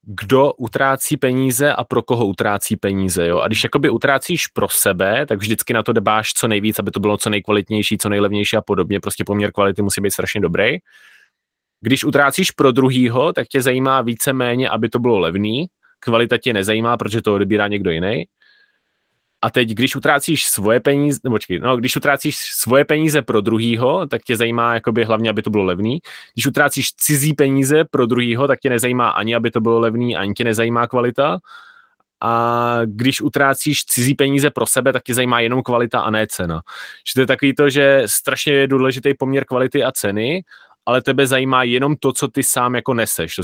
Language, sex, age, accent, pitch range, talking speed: Czech, male, 20-39, native, 110-135 Hz, 190 wpm